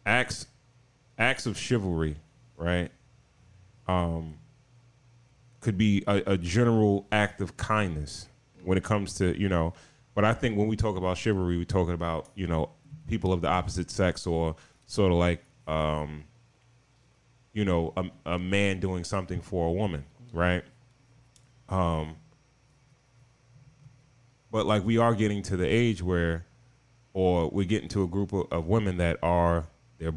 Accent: American